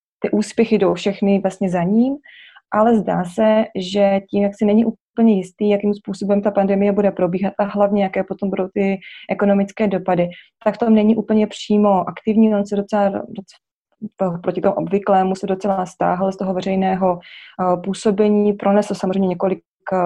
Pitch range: 180-205 Hz